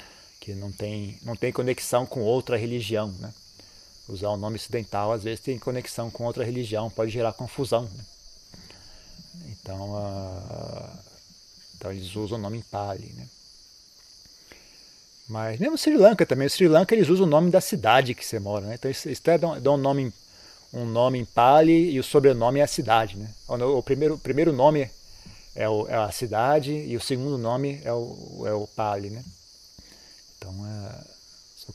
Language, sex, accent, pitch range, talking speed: Portuguese, male, Brazilian, 105-140 Hz, 180 wpm